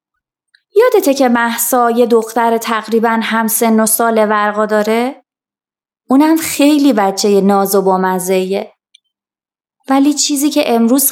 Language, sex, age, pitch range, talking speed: Persian, female, 20-39, 220-275 Hz, 125 wpm